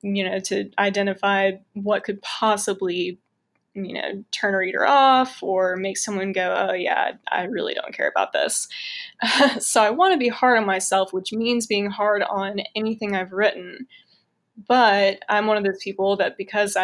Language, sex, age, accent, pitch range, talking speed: English, female, 10-29, American, 195-235 Hz, 175 wpm